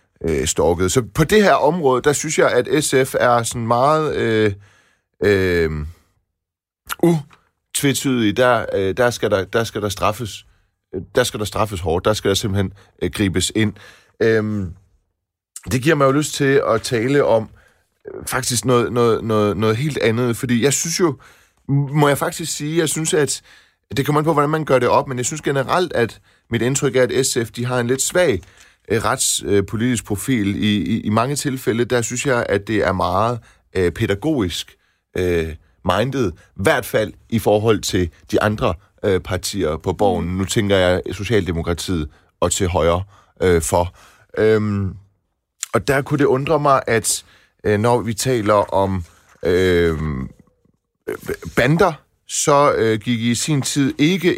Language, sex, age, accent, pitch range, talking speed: Danish, male, 30-49, native, 95-130 Hz, 145 wpm